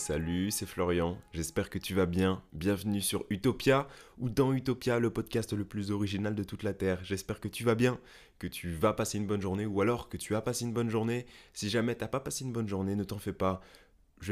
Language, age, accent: French, 20-39, French